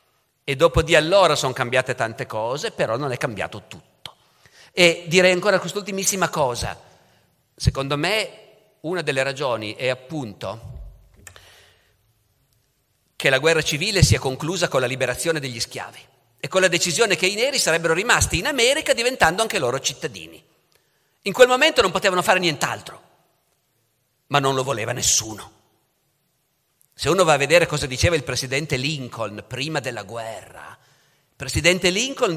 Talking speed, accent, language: 145 wpm, native, Italian